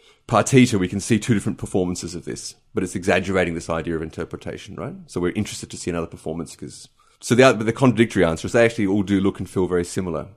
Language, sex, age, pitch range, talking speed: English, male, 30-49, 90-105 Hz, 230 wpm